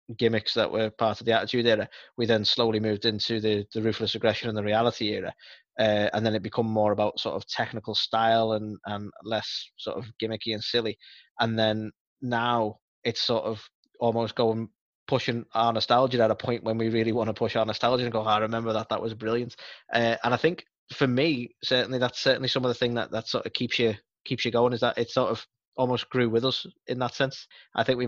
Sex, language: male, English